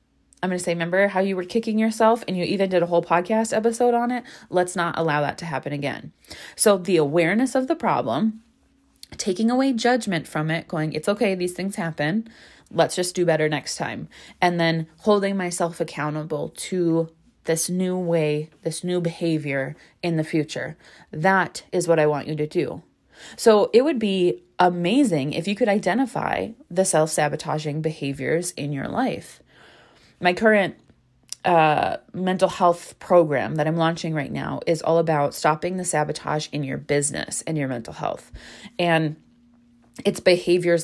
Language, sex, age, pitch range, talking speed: English, female, 20-39, 155-200 Hz, 170 wpm